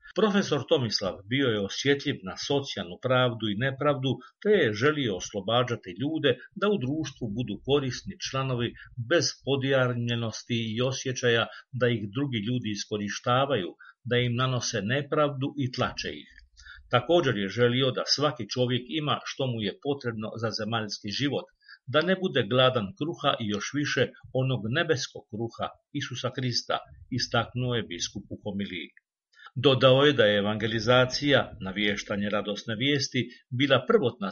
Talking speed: 140 wpm